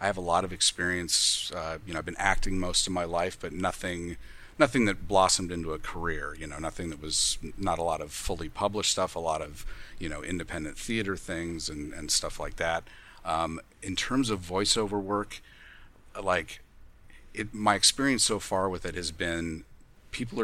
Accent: American